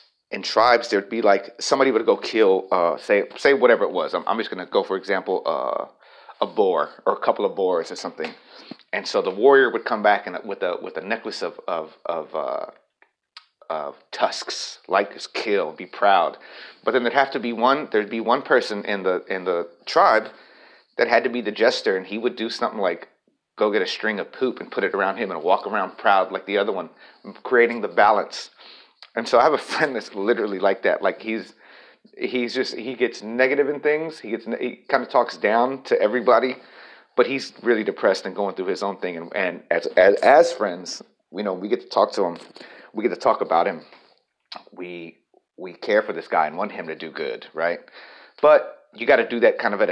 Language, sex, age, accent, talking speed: English, male, 30-49, American, 225 wpm